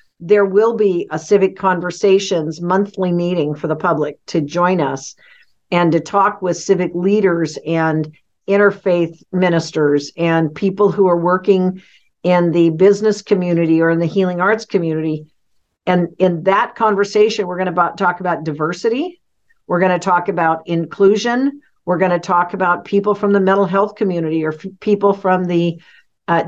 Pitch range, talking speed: 170-205 Hz, 160 wpm